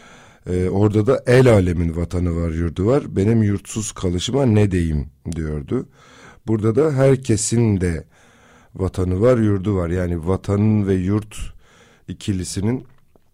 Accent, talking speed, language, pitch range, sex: native, 125 wpm, Turkish, 90-110 Hz, male